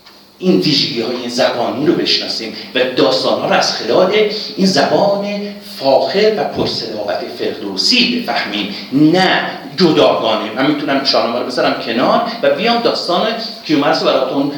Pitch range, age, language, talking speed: 150-245 Hz, 50-69, Persian, 130 wpm